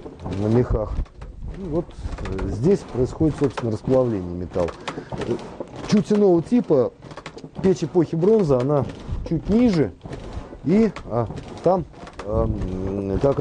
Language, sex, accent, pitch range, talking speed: Russian, male, native, 105-160 Hz, 90 wpm